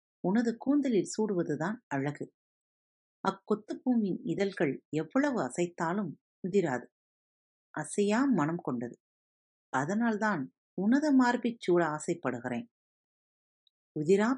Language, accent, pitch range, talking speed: Tamil, native, 140-225 Hz, 75 wpm